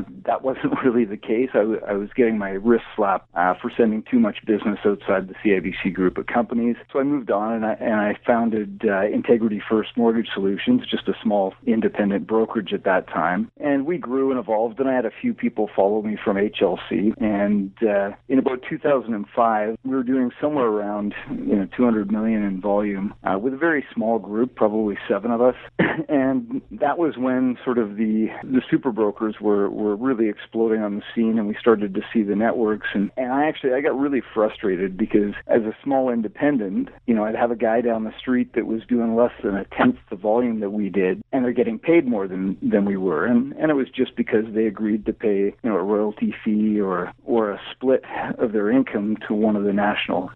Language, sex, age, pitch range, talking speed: English, male, 40-59, 105-130 Hz, 220 wpm